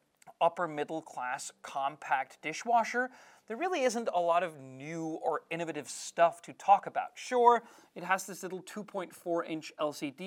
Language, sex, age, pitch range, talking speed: English, male, 30-49, 150-205 Hz, 150 wpm